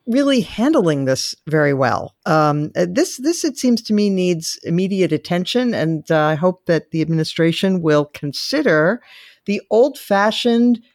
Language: English